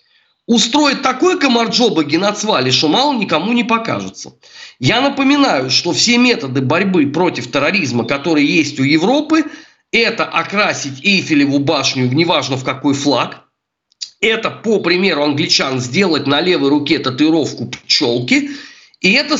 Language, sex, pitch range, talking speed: Russian, male, 150-245 Hz, 125 wpm